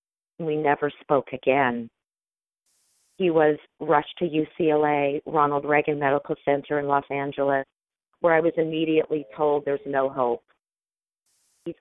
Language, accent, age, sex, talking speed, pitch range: English, American, 40-59, female, 125 wpm, 140-165 Hz